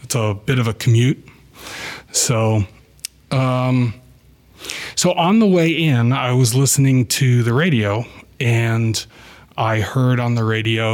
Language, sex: English, male